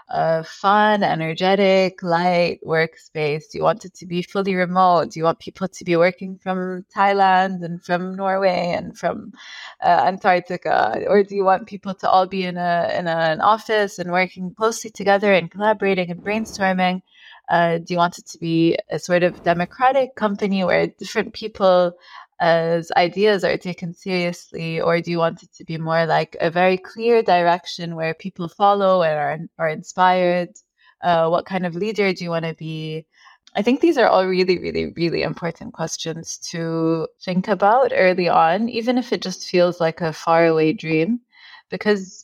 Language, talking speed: English, 180 wpm